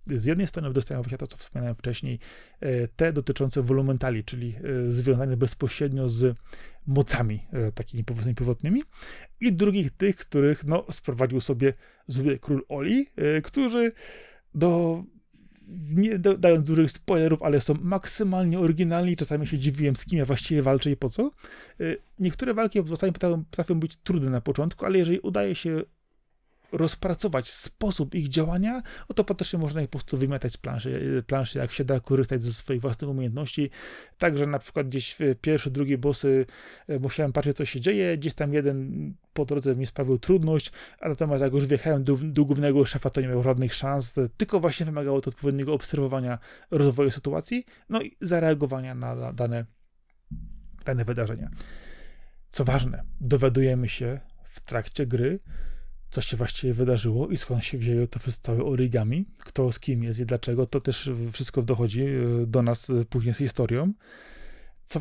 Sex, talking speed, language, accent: male, 160 wpm, Polish, native